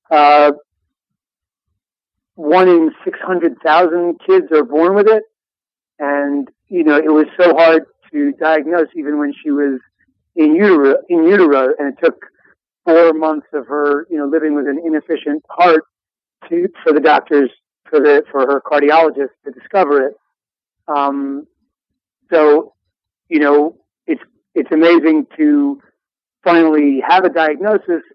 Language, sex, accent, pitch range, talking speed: English, male, American, 140-170 Hz, 140 wpm